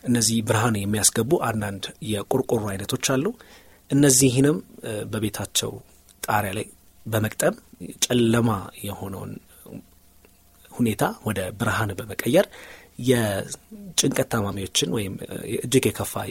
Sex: male